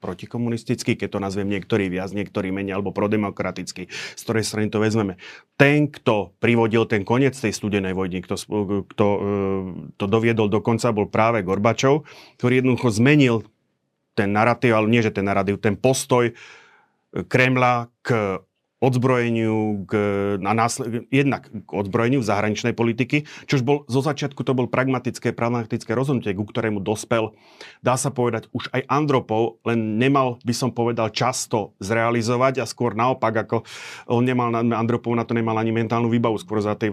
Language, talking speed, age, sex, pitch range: Slovak, 155 wpm, 30-49, male, 105-120 Hz